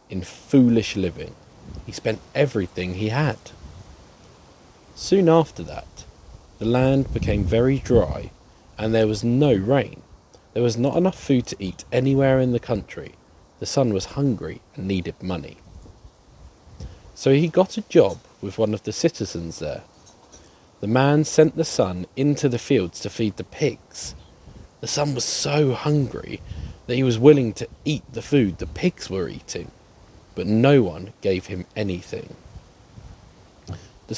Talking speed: 150 wpm